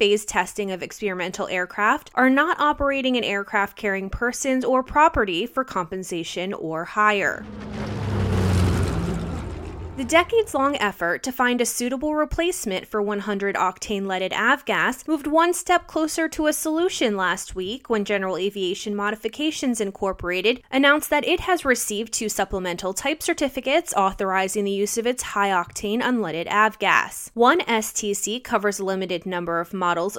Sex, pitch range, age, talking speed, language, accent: female, 185-280 Hz, 20-39, 135 wpm, English, American